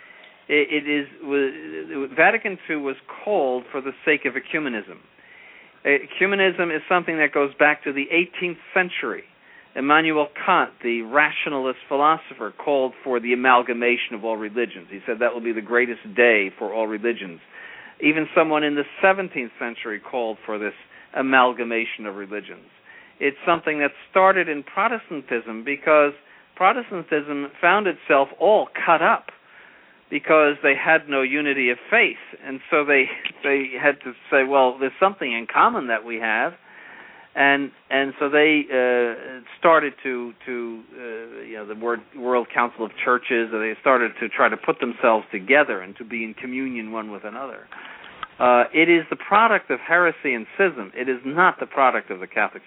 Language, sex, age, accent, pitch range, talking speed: English, male, 50-69, American, 120-150 Hz, 160 wpm